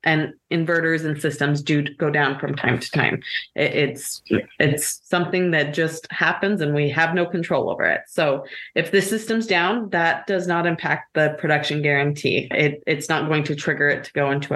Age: 30-49